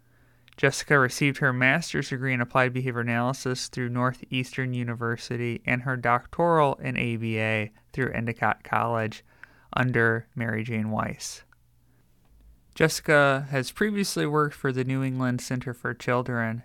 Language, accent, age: English, American, 30-49